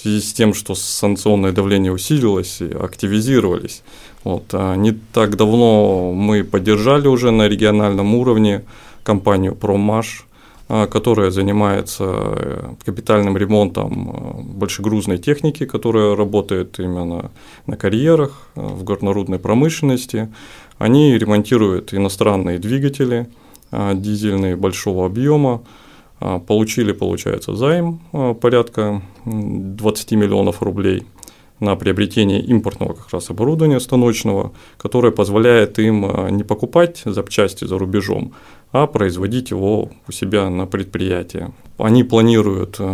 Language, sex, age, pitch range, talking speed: Russian, male, 20-39, 100-120 Hz, 105 wpm